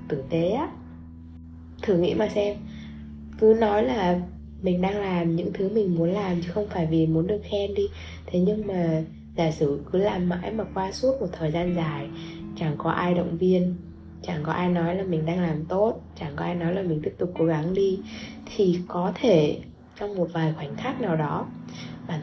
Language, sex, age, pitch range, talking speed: Vietnamese, female, 20-39, 165-210 Hz, 210 wpm